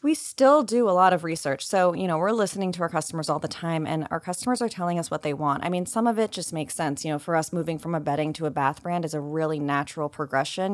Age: 20-39